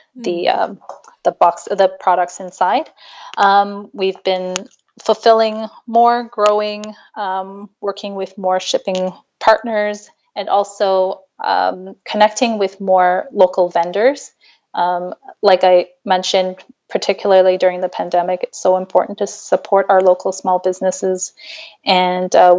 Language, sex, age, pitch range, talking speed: English, female, 20-39, 185-225 Hz, 125 wpm